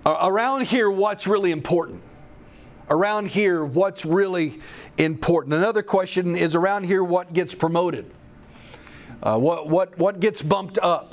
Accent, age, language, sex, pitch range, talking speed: American, 40-59, English, male, 160-195 Hz, 135 wpm